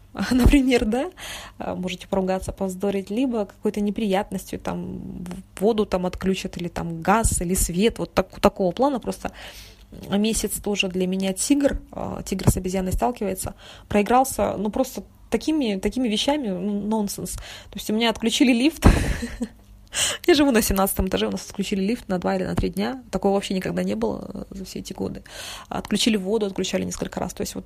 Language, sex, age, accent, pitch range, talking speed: Russian, female, 20-39, native, 190-225 Hz, 165 wpm